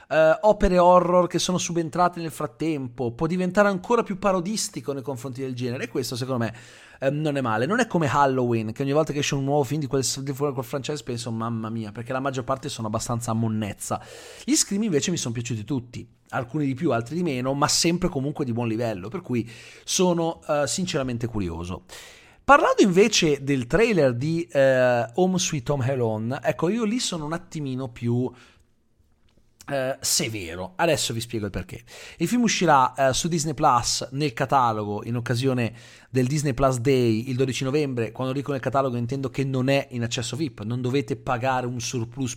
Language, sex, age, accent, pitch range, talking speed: Italian, male, 30-49, native, 120-155 Hz, 195 wpm